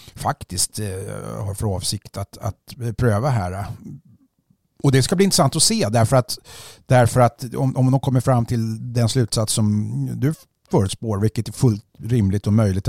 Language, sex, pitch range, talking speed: Swedish, male, 95-120 Hz, 170 wpm